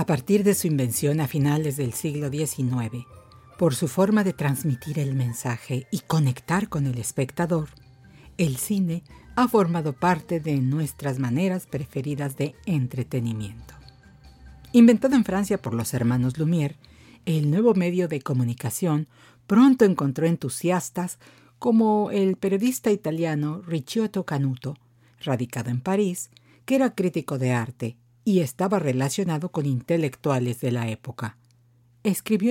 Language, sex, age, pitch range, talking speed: Spanish, female, 50-69, 125-180 Hz, 130 wpm